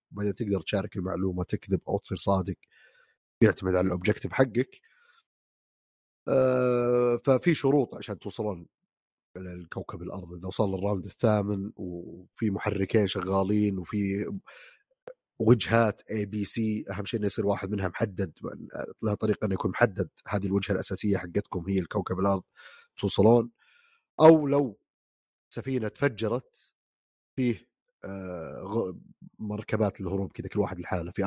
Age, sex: 30-49, male